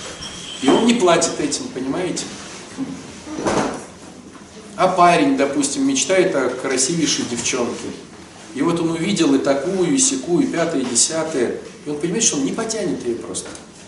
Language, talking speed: Russian, 145 wpm